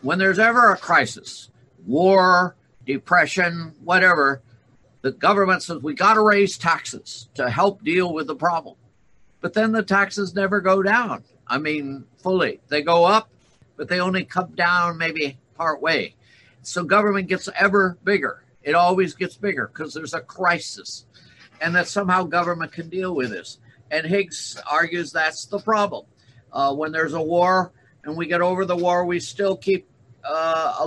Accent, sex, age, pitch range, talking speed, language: American, male, 60-79, 140-180 Hz, 165 wpm, Polish